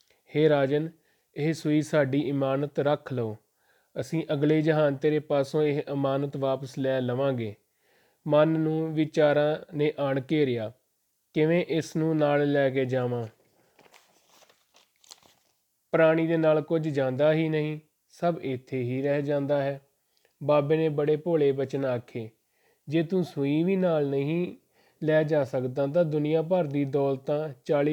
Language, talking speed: Punjabi, 135 wpm